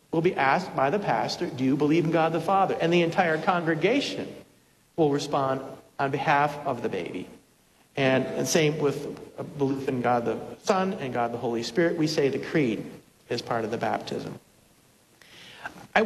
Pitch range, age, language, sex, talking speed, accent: 150-185 Hz, 50-69, English, male, 180 wpm, American